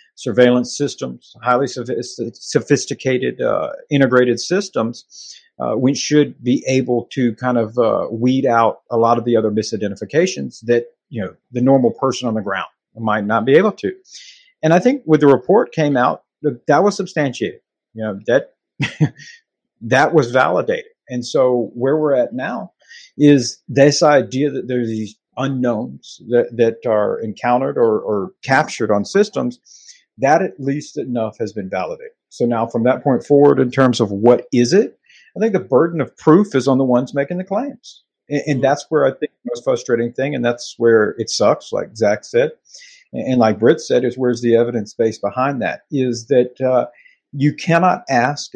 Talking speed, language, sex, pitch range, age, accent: 180 wpm, English, male, 120-170 Hz, 50-69, American